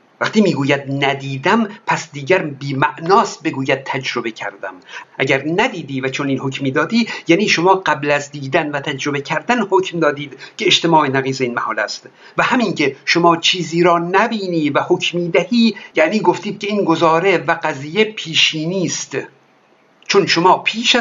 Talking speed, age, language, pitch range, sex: 155 wpm, 50-69, Persian, 140-195 Hz, male